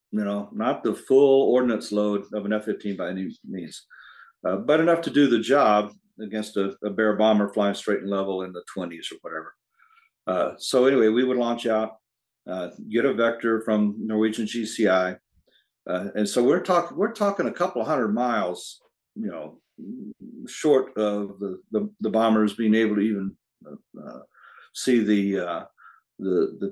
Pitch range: 105-120 Hz